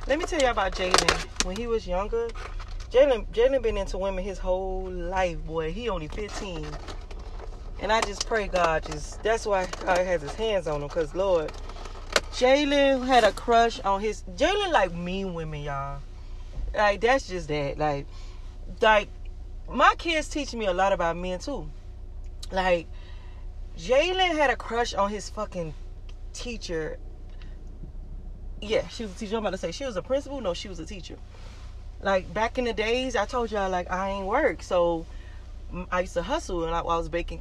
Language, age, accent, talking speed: English, 30-49, American, 180 wpm